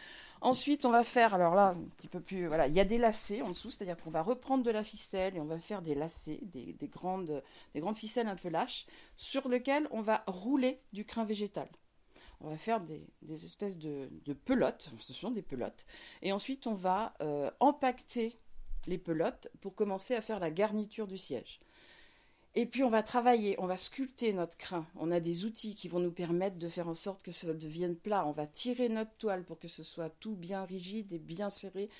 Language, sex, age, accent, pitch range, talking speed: French, female, 40-59, French, 180-240 Hz, 220 wpm